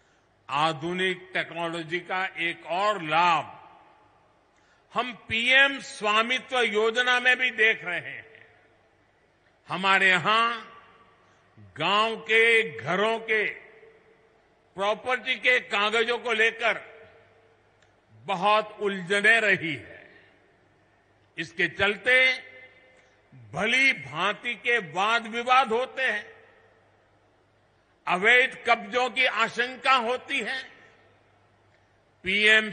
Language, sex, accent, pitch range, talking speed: Hindi, male, native, 185-250 Hz, 85 wpm